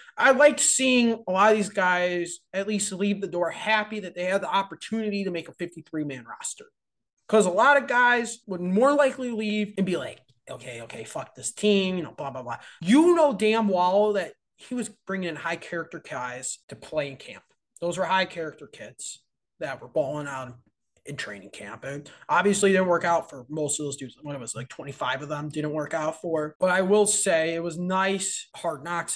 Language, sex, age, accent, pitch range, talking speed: English, male, 20-39, American, 165-215 Hz, 210 wpm